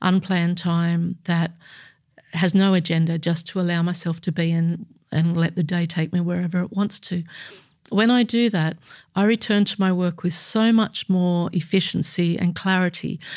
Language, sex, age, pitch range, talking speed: English, female, 50-69, 175-205 Hz, 175 wpm